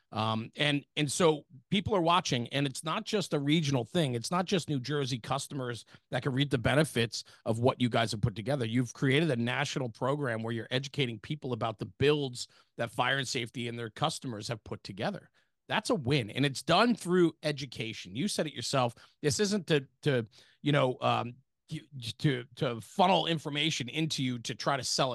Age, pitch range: 40-59, 125-160 Hz